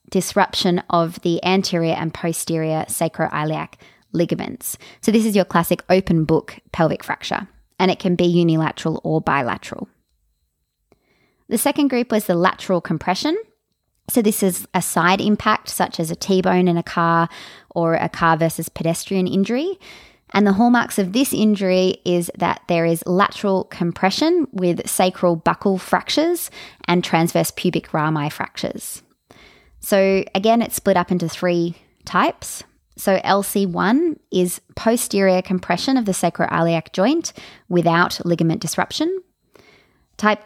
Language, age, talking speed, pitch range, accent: English, 20-39, 135 wpm, 170-210 Hz, Australian